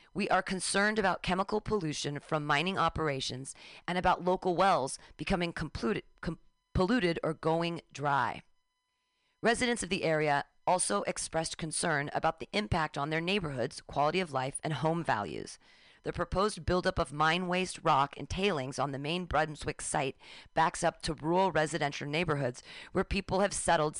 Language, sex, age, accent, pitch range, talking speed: English, female, 40-59, American, 155-195 Hz, 155 wpm